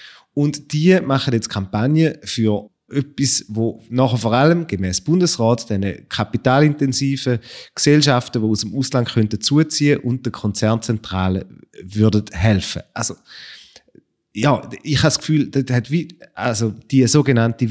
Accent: German